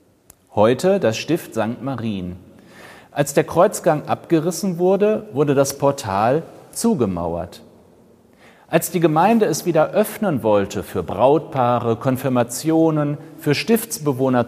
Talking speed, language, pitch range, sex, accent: 110 wpm, German, 115-180 Hz, male, German